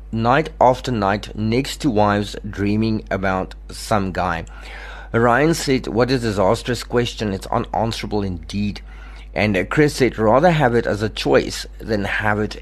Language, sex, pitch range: English, male, 100-130 Hz